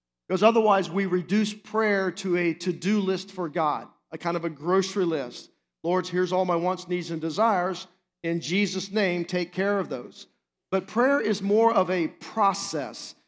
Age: 50-69